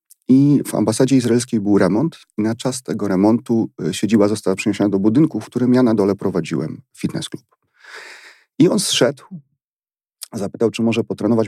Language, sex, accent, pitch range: Polish, male, native, 95-125 Hz